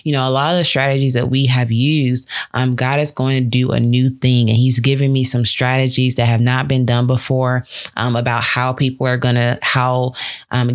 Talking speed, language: 230 wpm, English